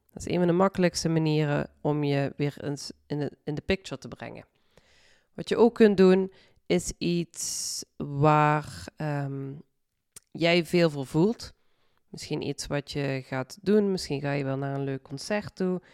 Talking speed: 175 wpm